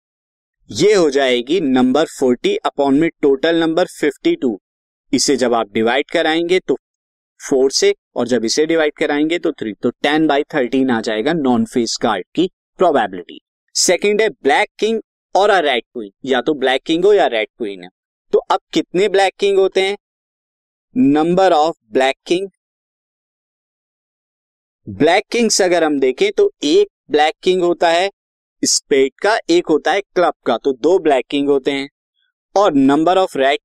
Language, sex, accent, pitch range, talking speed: Hindi, male, native, 140-225 Hz, 160 wpm